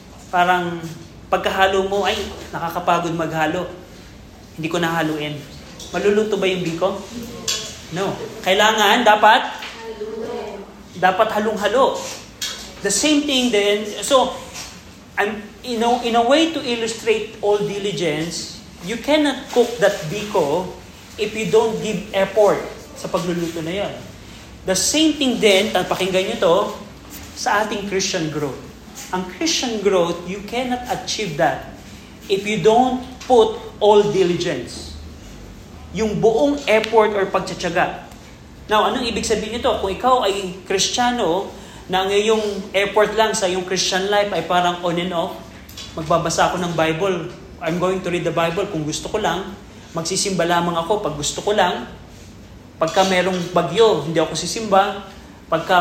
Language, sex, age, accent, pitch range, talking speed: Filipino, male, 20-39, native, 175-215 Hz, 130 wpm